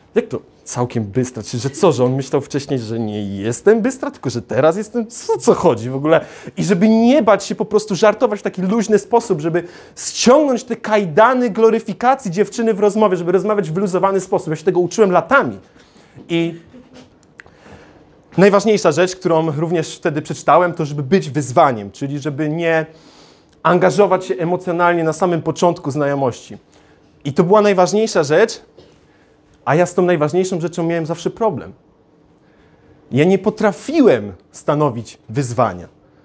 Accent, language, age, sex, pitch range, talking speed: native, Polish, 30-49, male, 160-215 Hz, 155 wpm